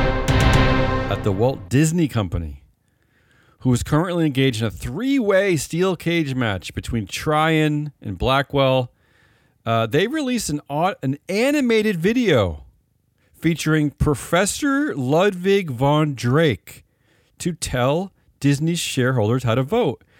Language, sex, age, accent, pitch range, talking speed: English, male, 40-59, American, 115-170 Hz, 115 wpm